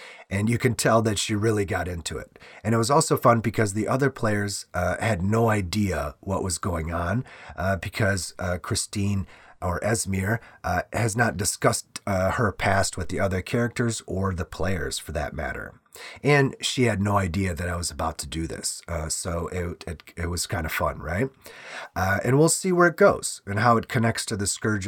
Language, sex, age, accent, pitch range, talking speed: English, male, 30-49, American, 90-115 Hz, 205 wpm